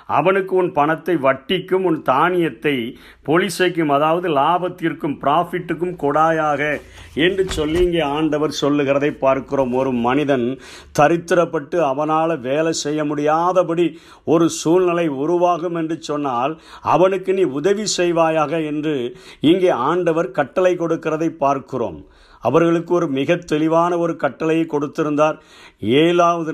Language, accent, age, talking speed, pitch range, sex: Tamil, native, 50-69, 105 wpm, 150-175 Hz, male